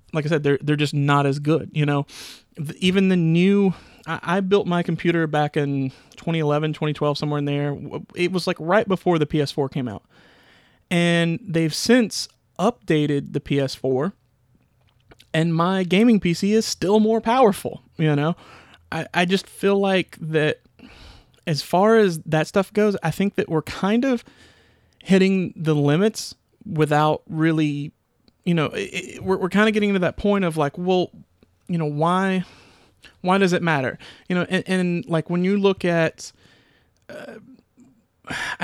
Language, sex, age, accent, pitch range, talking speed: English, male, 30-49, American, 150-190 Hz, 165 wpm